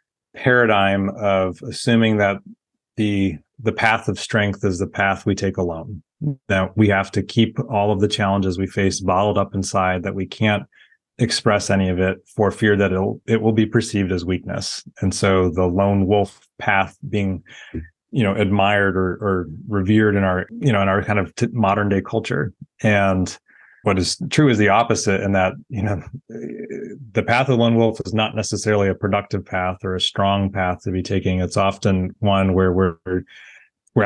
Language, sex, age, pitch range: English, male, 30-49, 95-110 Hz